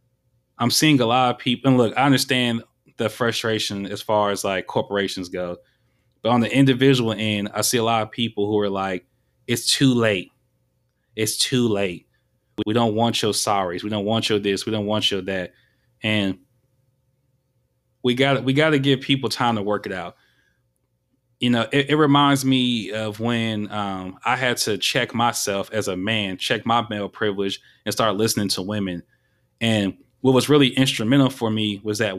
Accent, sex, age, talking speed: American, male, 20-39, 190 wpm